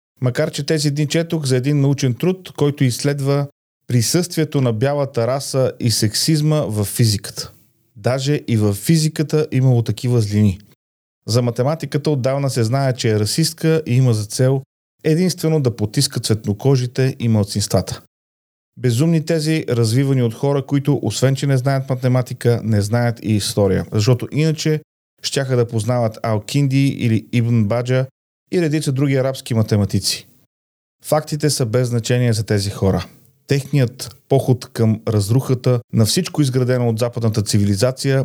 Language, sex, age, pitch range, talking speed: Bulgarian, male, 40-59, 110-140 Hz, 145 wpm